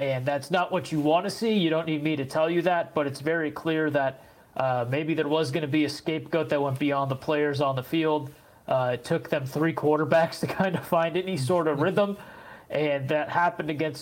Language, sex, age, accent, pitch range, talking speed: English, male, 30-49, American, 140-160 Hz, 240 wpm